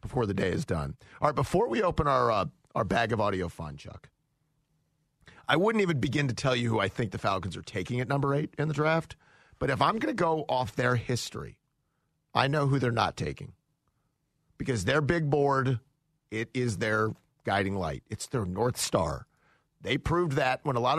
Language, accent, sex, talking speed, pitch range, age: English, American, male, 205 wpm, 120-155 Hz, 40-59